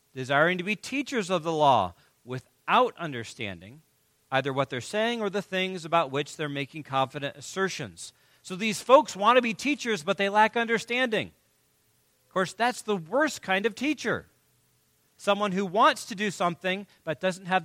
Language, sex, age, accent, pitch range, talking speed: English, male, 40-59, American, 140-205 Hz, 170 wpm